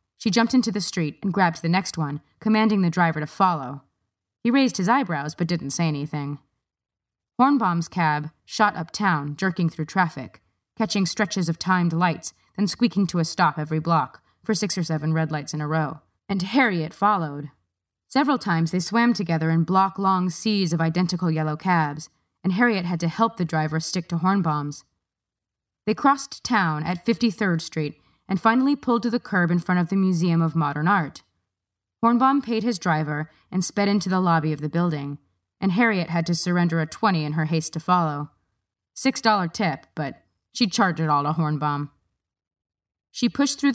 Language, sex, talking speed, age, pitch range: English, female, 180 wpm, 20-39, 150-205 Hz